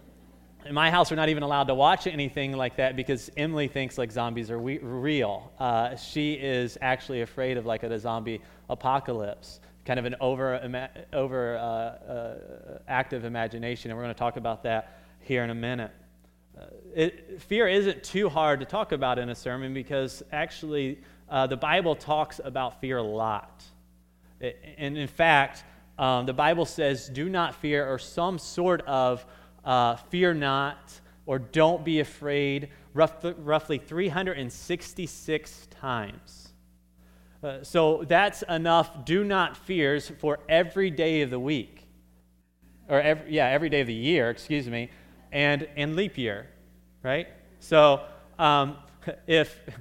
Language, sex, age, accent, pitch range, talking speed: English, male, 30-49, American, 120-160 Hz, 160 wpm